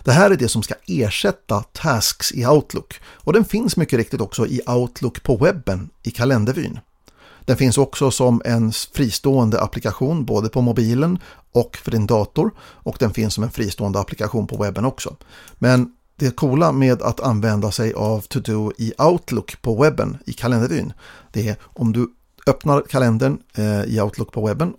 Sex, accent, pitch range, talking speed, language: male, native, 110-130 Hz, 175 wpm, Swedish